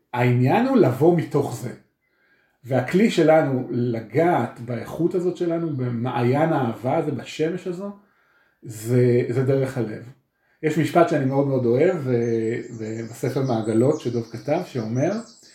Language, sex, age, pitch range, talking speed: Hebrew, male, 40-59, 120-150 Hz, 120 wpm